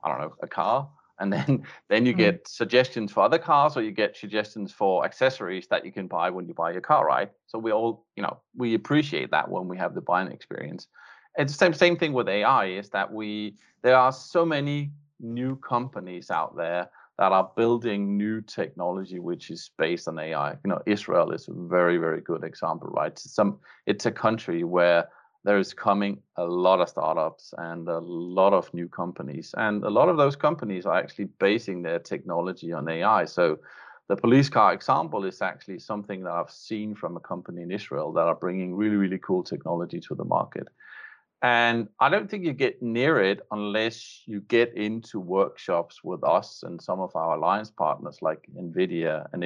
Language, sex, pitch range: English, male, 95-120 Hz